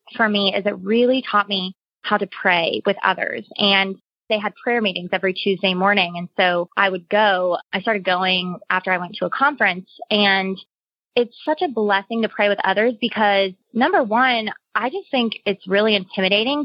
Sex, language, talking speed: female, English, 185 wpm